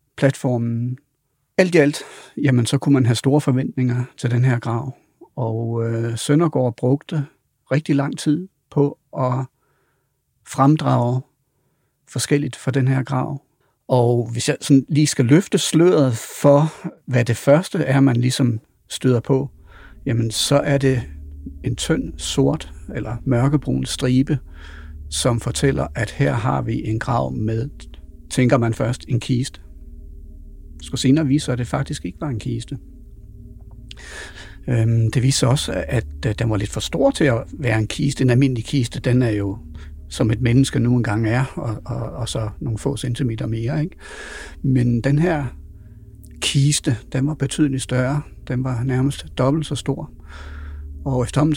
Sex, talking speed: male, 150 wpm